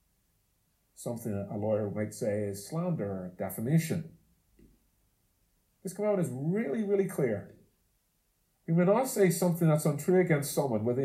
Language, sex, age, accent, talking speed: English, male, 40-59, American, 135 wpm